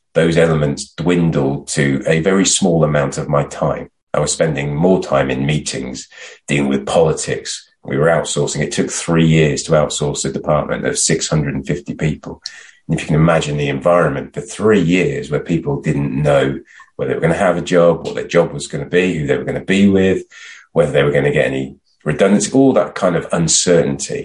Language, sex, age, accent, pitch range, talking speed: English, male, 30-49, British, 70-95 Hz, 210 wpm